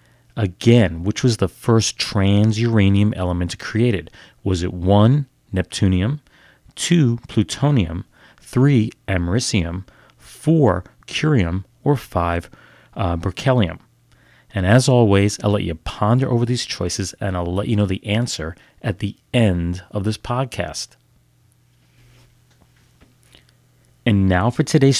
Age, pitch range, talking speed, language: 40-59, 95-125 Hz, 120 wpm, English